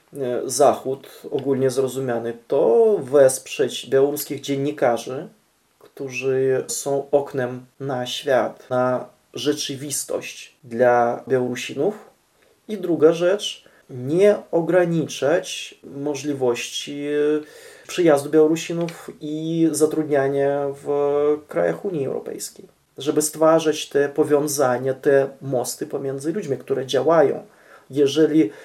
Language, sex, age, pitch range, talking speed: Polish, male, 20-39, 125-150 Hz, 85 wpm